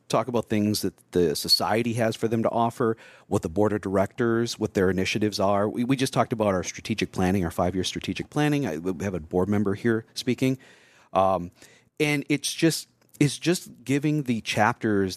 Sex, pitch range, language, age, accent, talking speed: male, 95-125 Hz, English, 40-59, American, 195 wpm